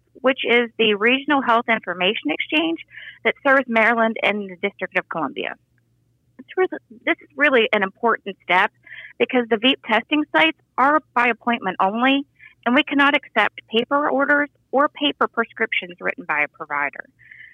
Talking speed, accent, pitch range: 155 wpm, American, 215-290 Hz